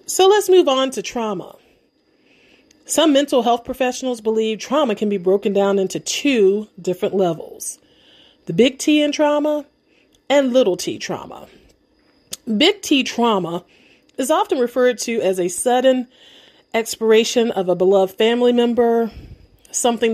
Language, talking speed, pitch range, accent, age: English, 135 wpm, 200-275 Hz, American, 40-59